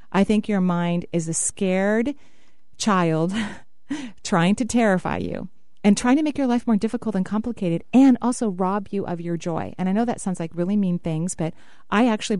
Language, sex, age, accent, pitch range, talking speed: English, female, 40-59, American, 175-230 Hz, 200 wpm